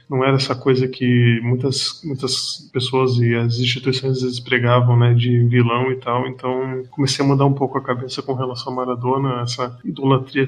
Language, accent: Portuguese, Brazilian